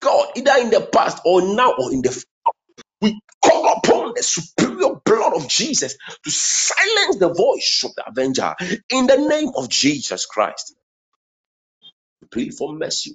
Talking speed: 160 wpm